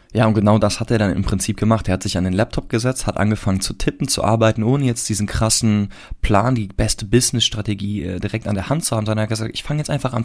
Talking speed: 270 wpm